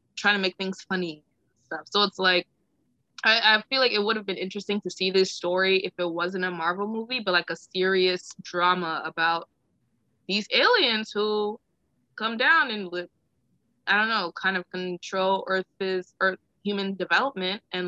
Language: English